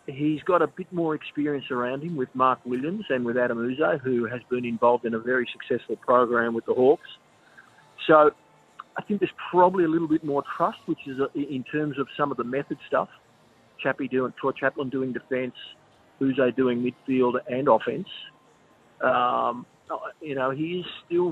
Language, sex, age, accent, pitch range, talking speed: English, male, 40-59, Australian, 120-145 Hz, 175 wpm